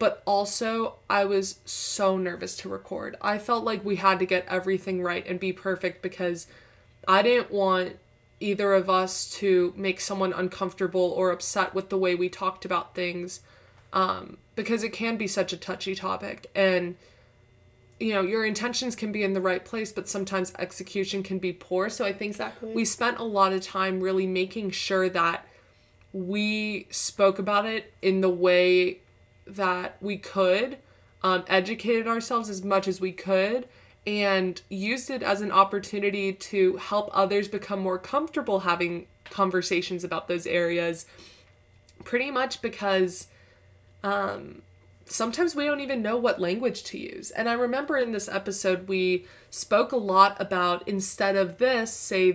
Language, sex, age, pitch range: English, female, 20-39, 180-205 Hz